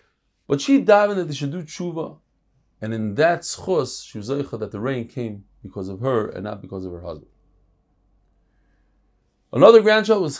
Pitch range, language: 115-175 Hz, English